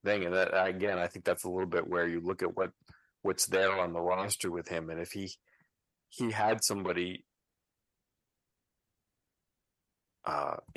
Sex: male